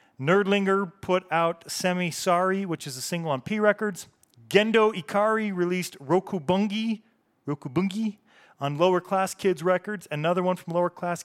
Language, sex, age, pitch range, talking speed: English, male, 40-59, 145-185 Hz, 150 wpm